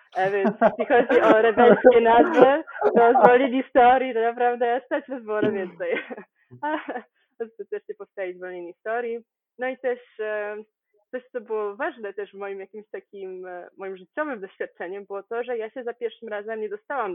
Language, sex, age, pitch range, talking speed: Polish, female, 20-39, 200-260 Hz, 165 wpm